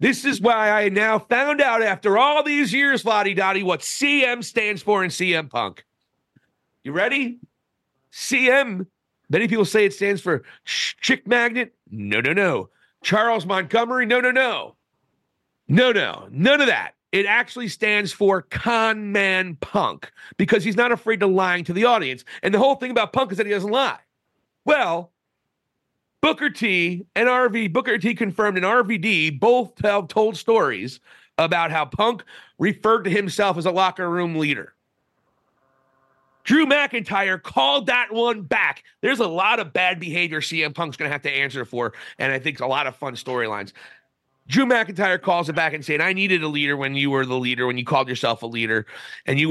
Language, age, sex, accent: English, 40-59, male, American